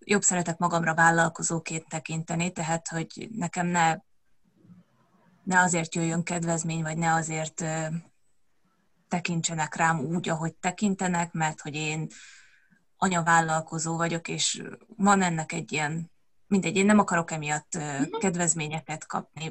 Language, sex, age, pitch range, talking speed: Hungarian, female, 20-39, 165-190 Hz, 115 wpm